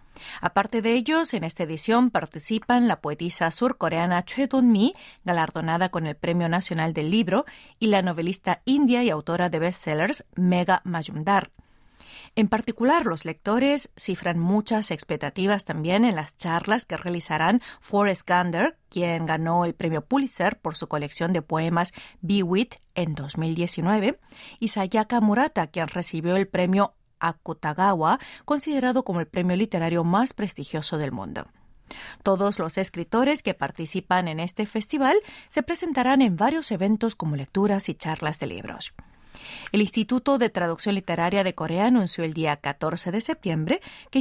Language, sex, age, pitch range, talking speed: Spanish, female, 40-59, 165-225 Hz, 145 wpm